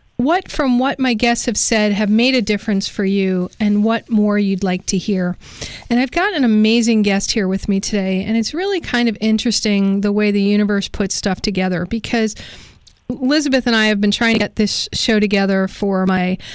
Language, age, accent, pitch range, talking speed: English, 40-59, American, 195-235 Hz, 205 wpm